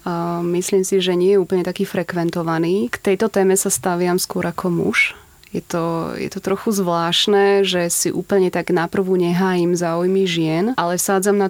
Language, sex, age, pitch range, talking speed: Slovak, female, 20-39, 170-190 Hz, 185 wpm